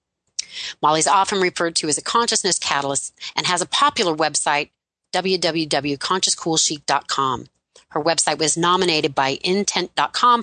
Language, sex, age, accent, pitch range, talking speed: English, female, 30-49, American, 150-195 Hz, 115 wpm